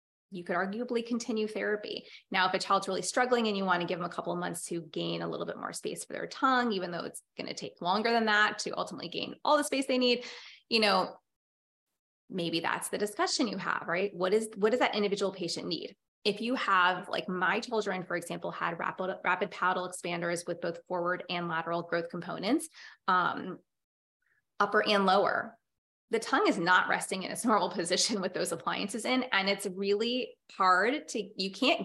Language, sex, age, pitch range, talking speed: English, female, 20-39, 180-225 Hz, 205 wpm